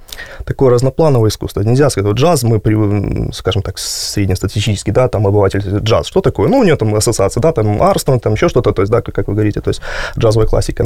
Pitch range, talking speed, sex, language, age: 105-130 Hz, 210 wpm, male, Russian, 20-39